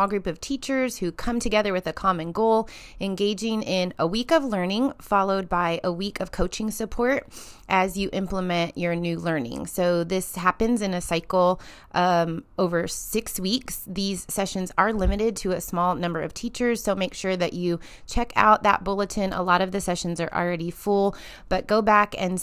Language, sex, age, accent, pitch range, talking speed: English, female, 30-49, American, 170-205 Hz, 185 wpm